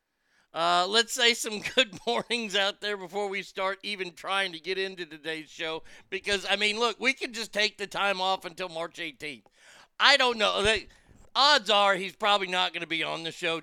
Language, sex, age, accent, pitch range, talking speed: English, male, 50-69, American, 170-225 Hz, 205 wpm